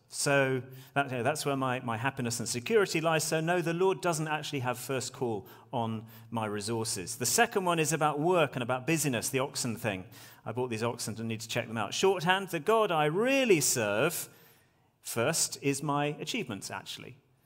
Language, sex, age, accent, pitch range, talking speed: English, male, 40-59, British, 115-150 Hz, 185 wpm